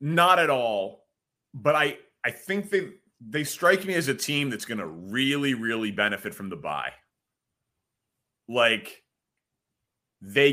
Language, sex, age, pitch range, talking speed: English, male, 30-49, 110-135 Hz, 140 wpm